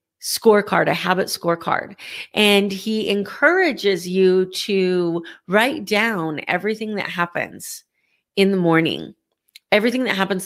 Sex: female